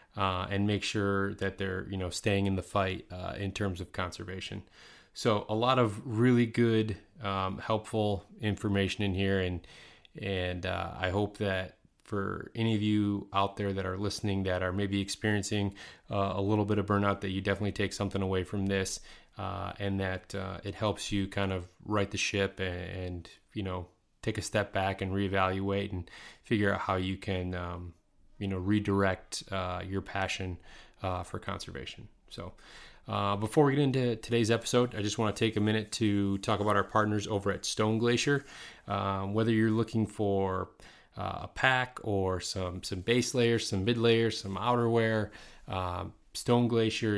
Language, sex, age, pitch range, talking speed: English, male, 20-39, 95-110 Hz, 180 wpm